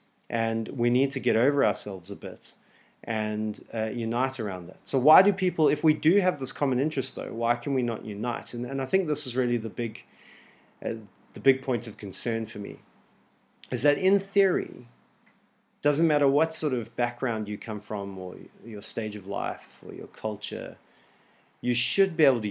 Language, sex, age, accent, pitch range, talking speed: English, male, 30-49, Australian, 110-140 Hz, 190 wpm